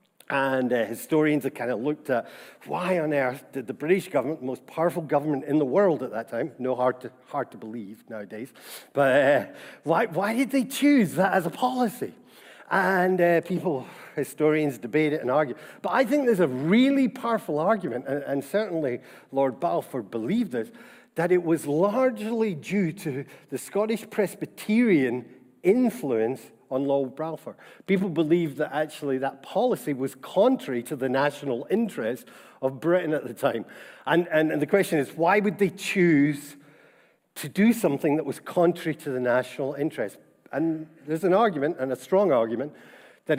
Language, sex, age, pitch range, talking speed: English, male, 50-69, 140-195 Hz, 170 wpm